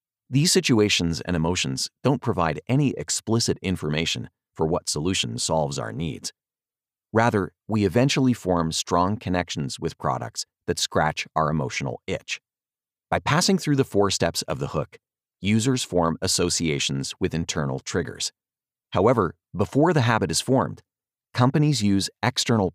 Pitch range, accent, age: 80-120 Hz, American, 30-49